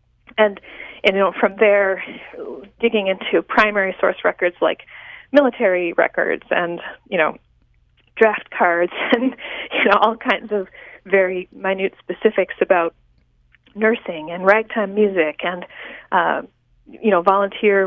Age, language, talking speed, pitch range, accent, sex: 40-59, English, 130 wpm, 185-230 Hz, American, female